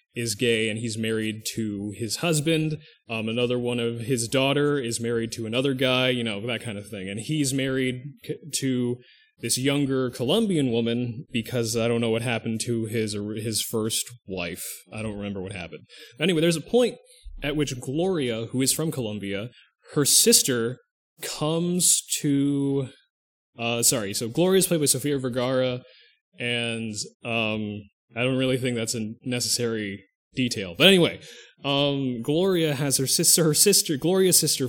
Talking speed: 165 wpm